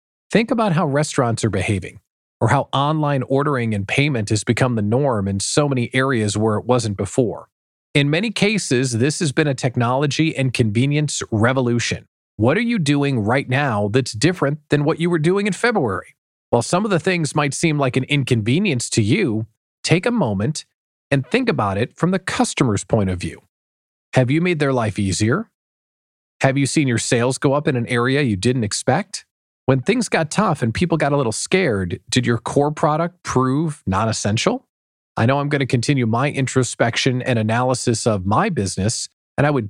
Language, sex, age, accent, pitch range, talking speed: English, male, 40-59, American, 115-155 Hz, 190 wpm